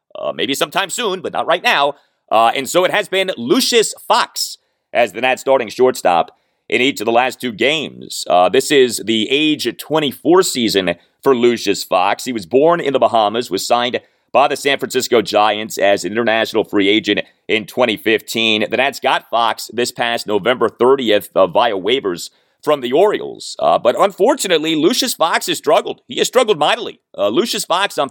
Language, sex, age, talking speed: English, male, 30-49, 185 wpm